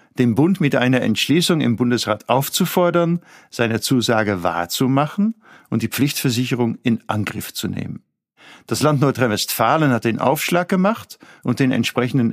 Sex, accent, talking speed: male, German, 135 wpm